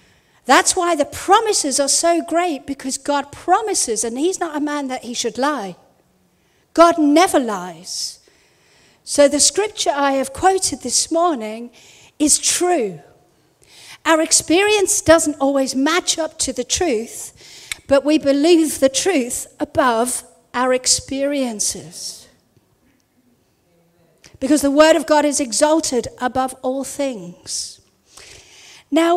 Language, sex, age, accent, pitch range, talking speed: English, female, 50-69, British, 235-320 Hz, 125 wpm